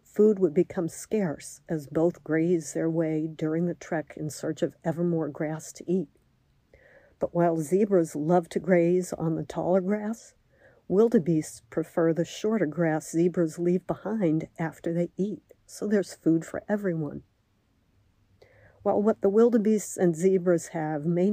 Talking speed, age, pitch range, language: 150 wpm, 50-69, 160-185 Hz, English